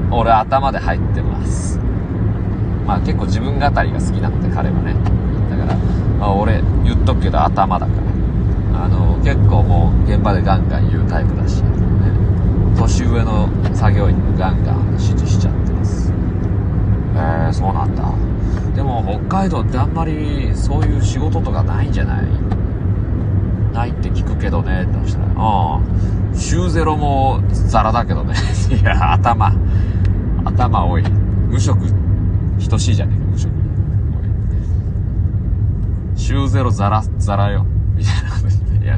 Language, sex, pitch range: Japanese, male, 95-100 Hz